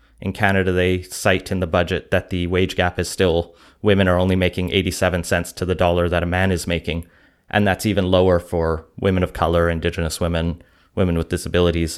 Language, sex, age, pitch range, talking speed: English, male, 30-49, 85-100 Hz, 200 wpm